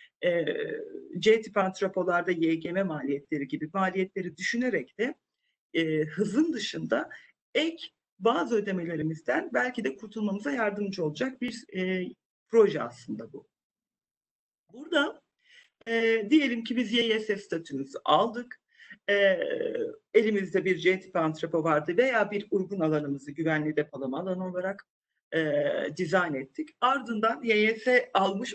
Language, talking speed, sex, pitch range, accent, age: Turkish, 105 wpm, male, 175-250 Hz, native, 40-59